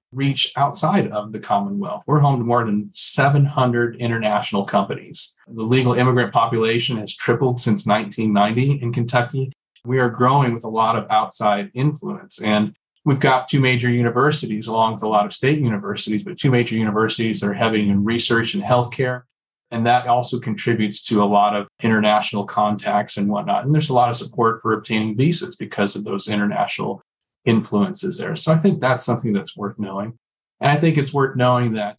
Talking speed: 180 wpm